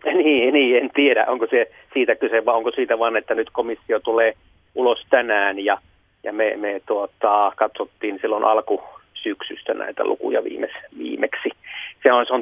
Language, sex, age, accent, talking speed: Finnish, male, 30-49, native, 160 wpm